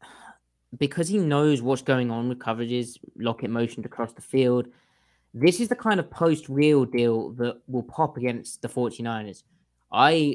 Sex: male